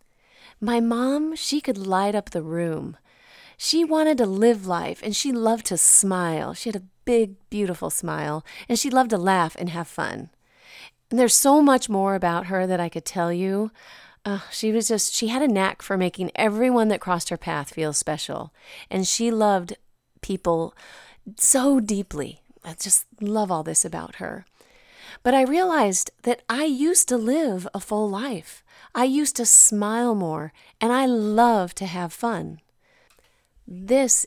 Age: 30-49